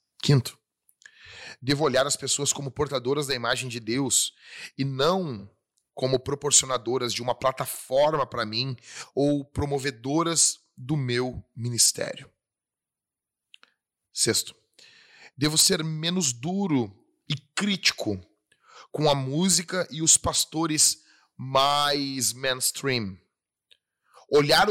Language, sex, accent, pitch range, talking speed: Portuguese, male, Brazilian, 115-150 Hz, 100 wpm